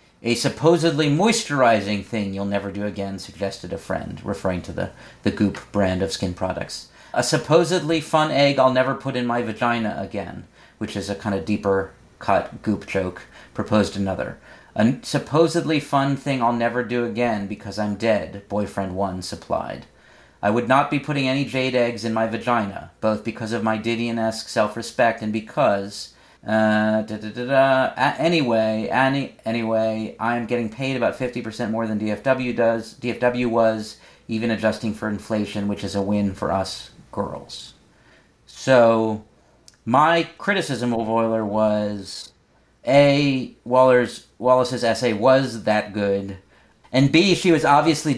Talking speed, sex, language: 155 wpm, male, English